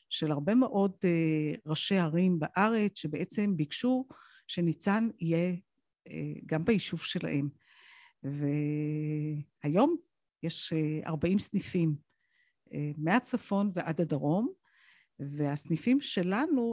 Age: 50-69